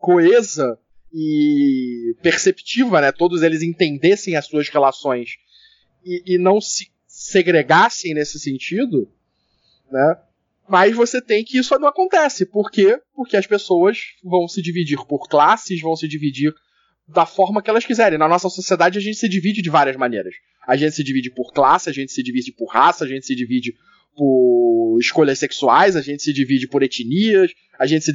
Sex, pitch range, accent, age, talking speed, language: male, 150-225 Hz, Brazilian, 20-39, 175 wpm, Portuguese